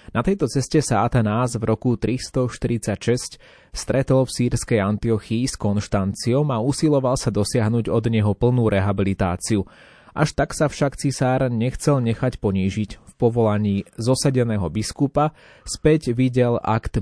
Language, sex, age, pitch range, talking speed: Slovak, male, 20-39, 100-125 Hz, 130 wpm